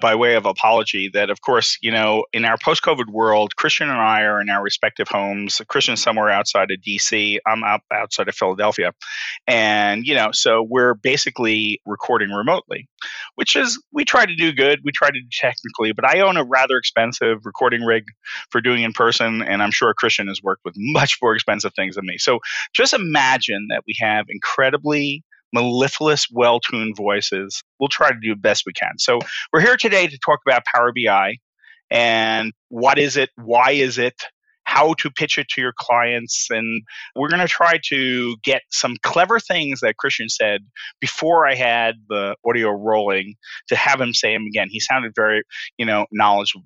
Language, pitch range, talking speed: English, 110-145 Hz, 190 wpm